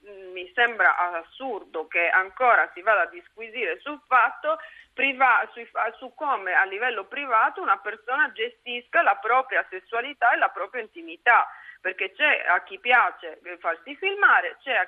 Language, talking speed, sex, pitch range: Italian, 150 wpm, female, 190-295 Hz